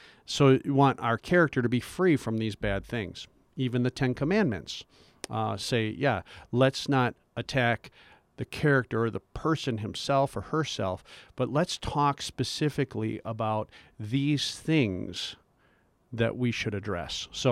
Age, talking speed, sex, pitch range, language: 50-69, 145 wpm, male, 110-145 Hz, English